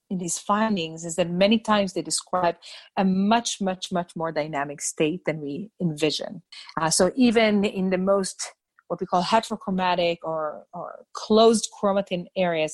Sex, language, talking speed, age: female, English, 160 wpm, 40-59